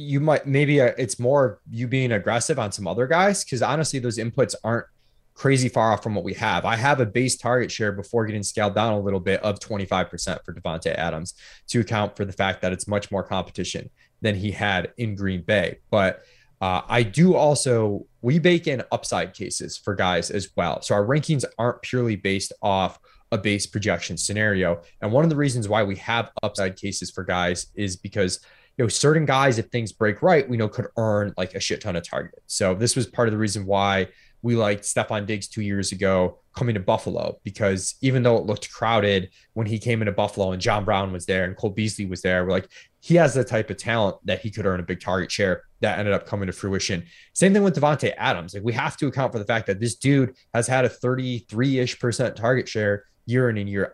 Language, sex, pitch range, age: English, male, 100-125 Hz, 20-39